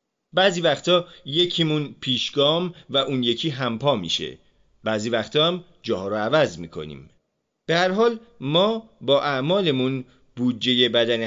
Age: 40-59